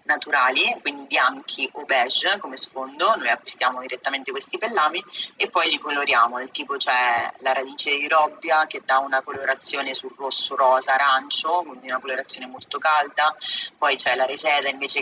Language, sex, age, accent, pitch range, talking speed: Italian, female, 30-49, native, 135-160 Hz, 155 wpm